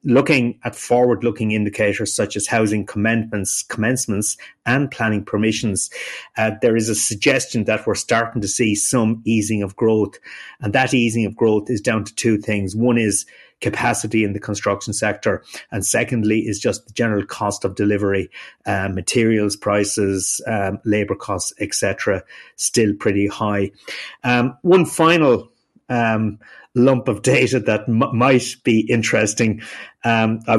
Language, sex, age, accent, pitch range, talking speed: English, male, 30-49, Irish, 105-120 Hz, 150 wpm